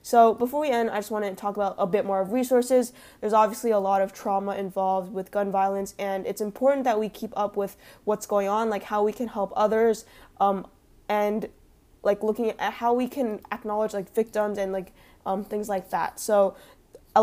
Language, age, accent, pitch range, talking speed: English, 20-39, American, 200-225 Hz, 215 wpm